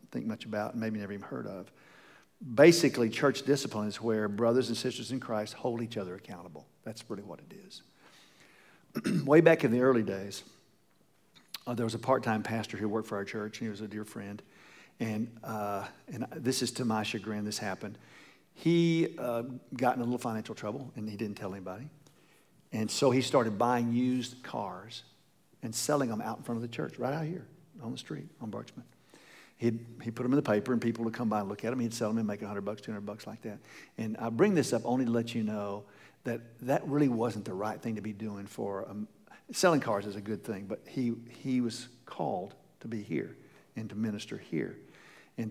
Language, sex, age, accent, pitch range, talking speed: English, male, 50-69, American, 105-125 Hz, 220 wpm